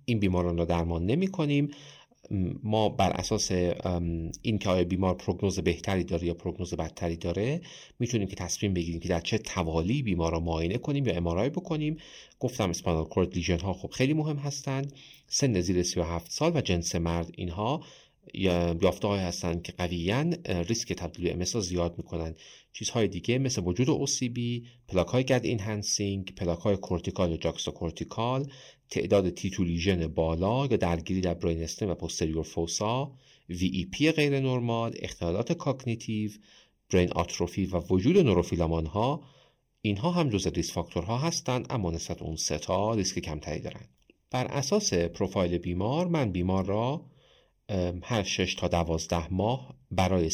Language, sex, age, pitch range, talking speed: Persian, male, 40-59, 85-125 Hz, 145 wpm